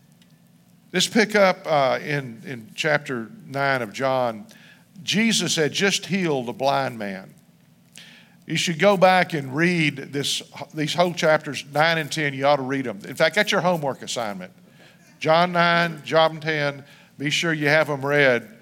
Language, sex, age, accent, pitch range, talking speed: English, male, 50-69, American, 135-180 Hz, 165 wpm